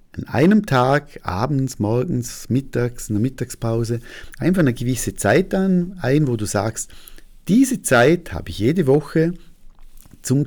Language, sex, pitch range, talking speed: German, male, 110-150 Hz, 140 wpm